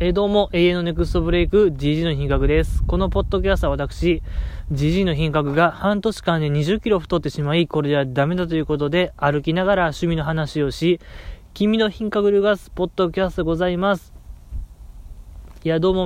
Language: Japanese